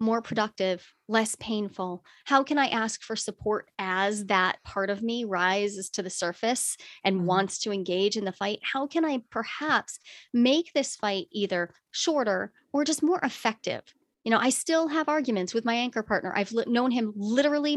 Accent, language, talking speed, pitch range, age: American, English, 180 wpm, 200-265 Hz, 30-49